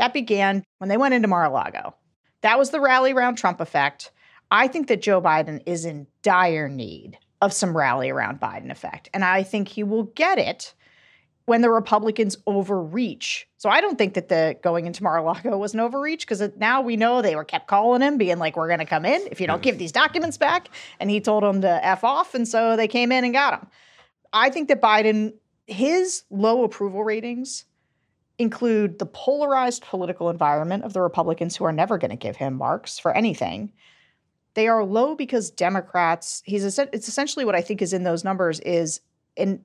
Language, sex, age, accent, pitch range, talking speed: English, female, 40-59, American, 175-240 Hz, 200 wpm